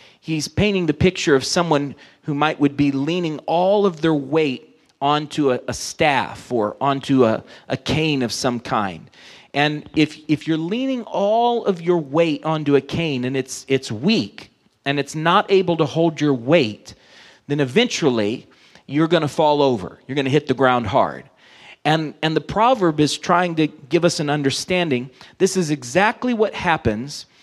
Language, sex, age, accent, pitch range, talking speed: English, male, 40-59, American, 140-180 Hz, 175 wpm